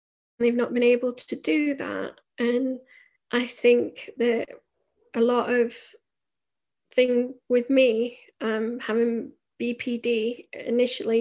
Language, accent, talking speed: English, British, 105 wpm